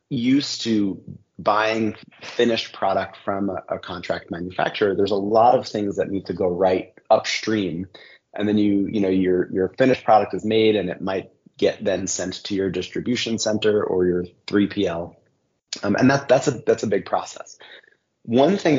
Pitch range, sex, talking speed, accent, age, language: 95-110 Hz, male, 180 wpm, American, 30-49, English